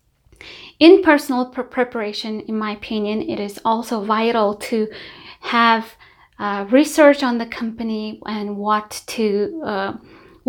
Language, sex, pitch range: English, female, 210-255 Hz